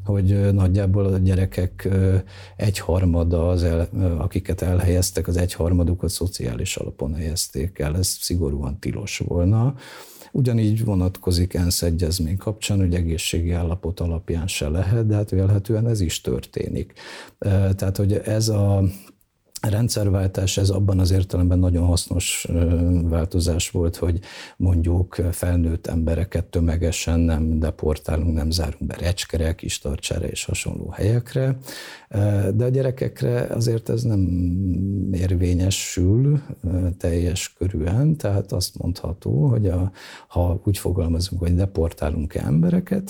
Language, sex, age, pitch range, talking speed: Hungarian, male, 50-69, 85-100 Hz, 115 wpm